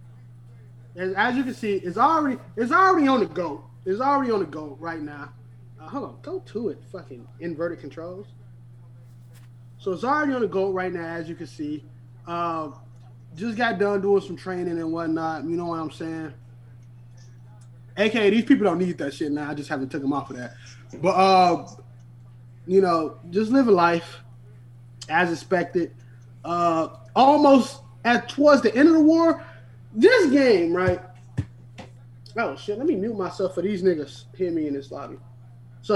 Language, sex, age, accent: English, male, 20-39, American